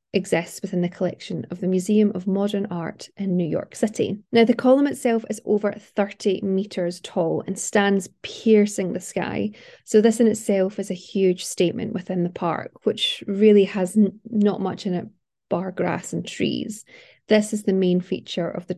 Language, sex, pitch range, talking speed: English, female, 185-215 Hz, 185 wpm